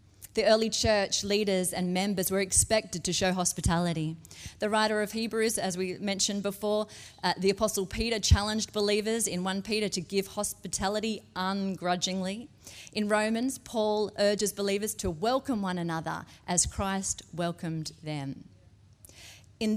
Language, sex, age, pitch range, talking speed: English, female, 30-49, 170-220 Hz, 140 wpm